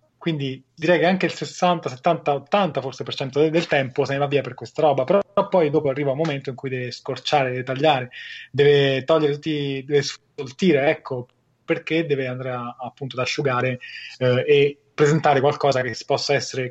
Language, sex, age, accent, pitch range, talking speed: Italian, male, 20-39, native, 130-155 Hz, 190 wpm